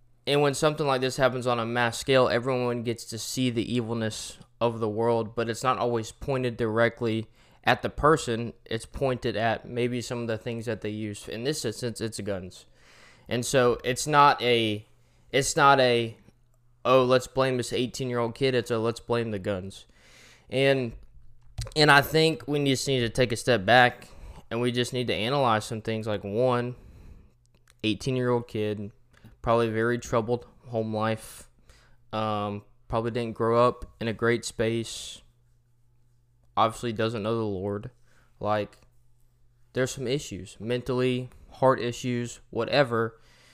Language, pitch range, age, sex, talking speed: English, 110-125 Hz, 20-39, male, 160 wpm